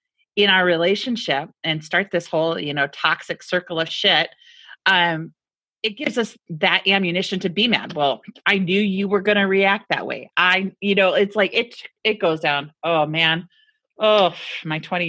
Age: 40-59